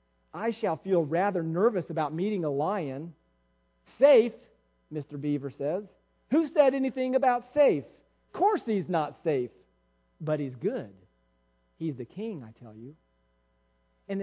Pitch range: 175-255 Hz